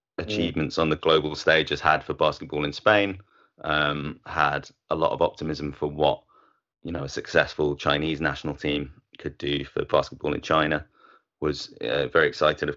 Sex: male